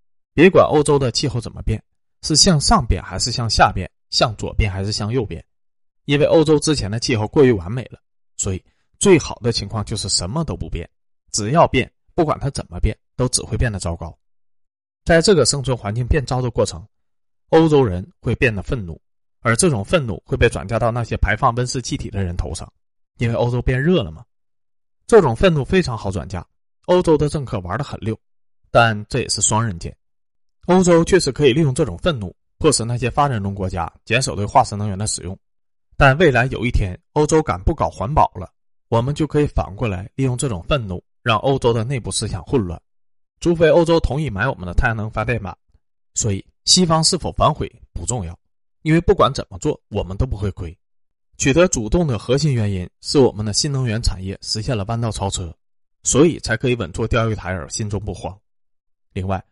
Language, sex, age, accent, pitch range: Chinese, male, 20-39, native, 95-135 Hz